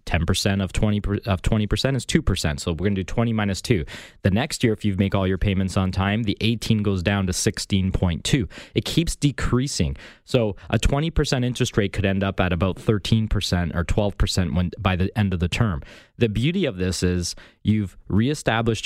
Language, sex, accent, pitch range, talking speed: English, male, American, 90-115 Hz, 205 wpm